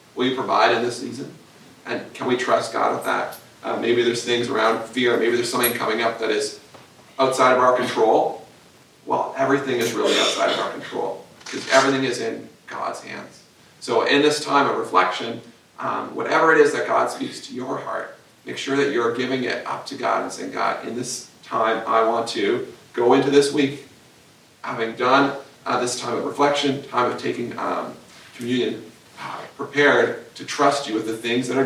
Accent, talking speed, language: American, 195 wpm, English